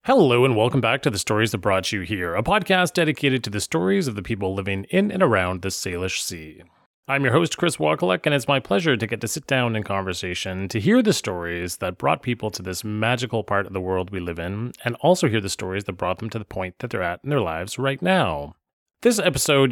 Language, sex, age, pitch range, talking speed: English, male, 30-49, 95-135 Hz, 245 wpm